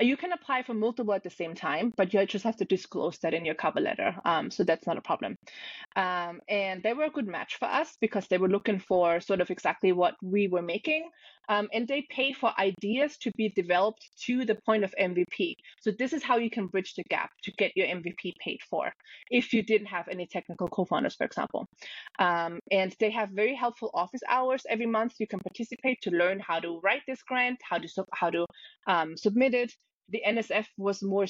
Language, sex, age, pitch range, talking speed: English, female, 20-39, 185-245 Hz, 225 wpm